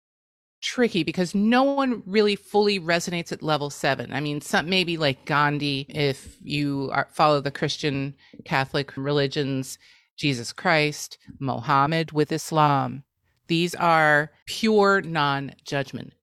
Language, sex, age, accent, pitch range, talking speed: English, female, 30-49, American, 135-175 Hz, 120 wpm